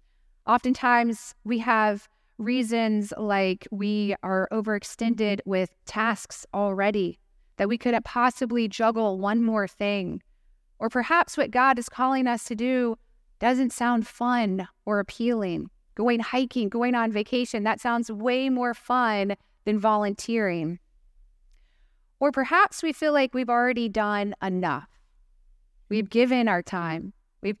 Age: 30-49